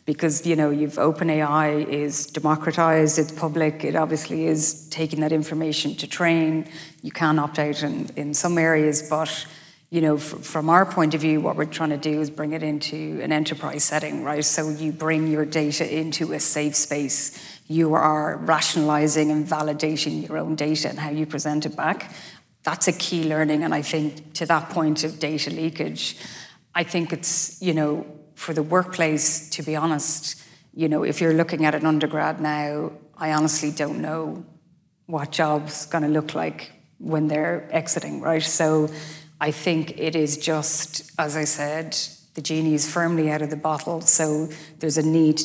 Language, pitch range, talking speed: English, 150-160 Hz, 180 wpm